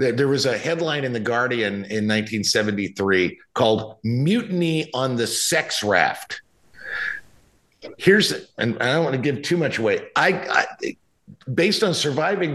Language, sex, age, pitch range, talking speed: English, male, 50-69, 115-170 Hz, 150 wpm